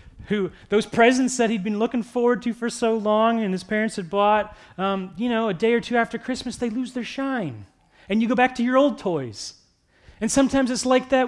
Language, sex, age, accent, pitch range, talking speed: English, male, 30-49, American, 155-245 Hz, 230 wpm